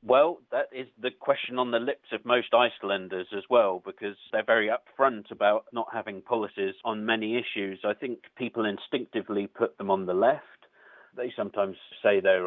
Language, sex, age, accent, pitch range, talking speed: English, male, 40-59, British, 95-115 Hz, 180 wpm